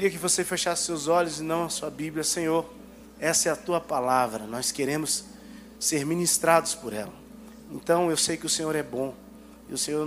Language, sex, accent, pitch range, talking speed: Portuguese, male, Brazilian, 135-180 Hz, 195 wpm